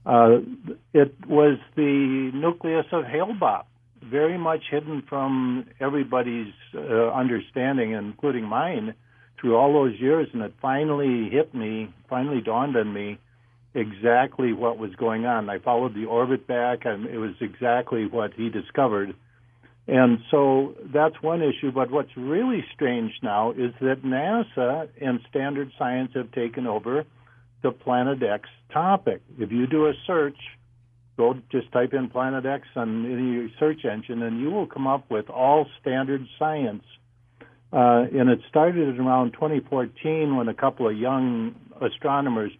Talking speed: 150 wpm